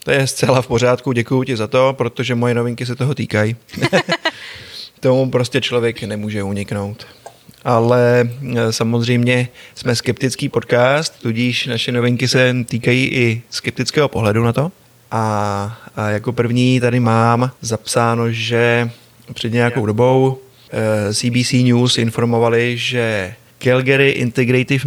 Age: 20-39